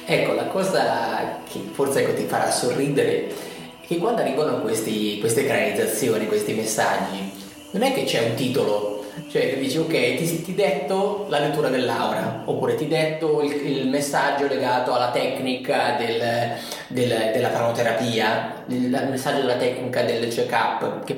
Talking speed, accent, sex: 155 wpm, native, male